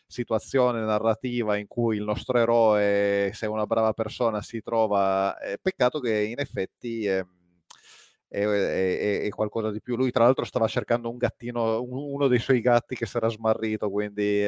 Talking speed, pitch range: 155 wpm, 100-120 Hz